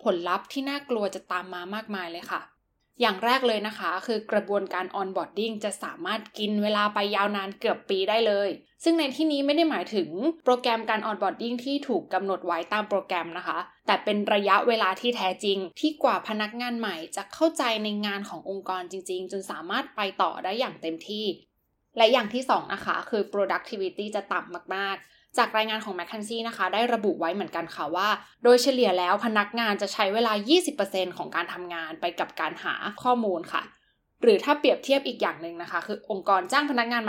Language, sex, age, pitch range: Thai, female, 20-39, 190-235 Hz